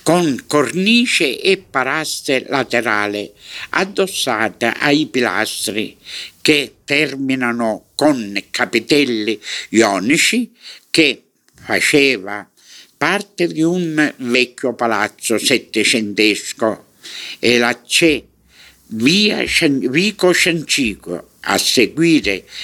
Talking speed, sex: 75 wpm, male